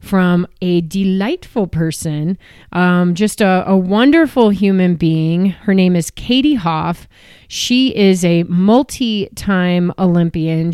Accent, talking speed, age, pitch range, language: American, 115 wpm, 30-49, 175-210 Hz, English